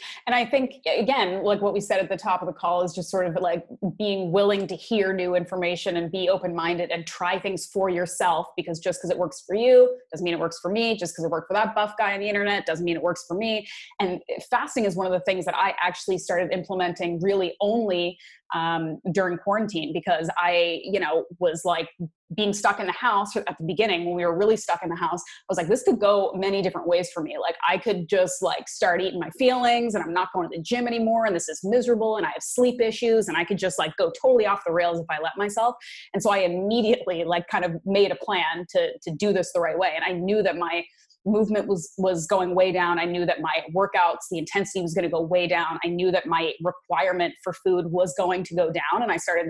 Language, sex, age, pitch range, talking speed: English, female, 20-39, 175-205 Hz, 255 wpm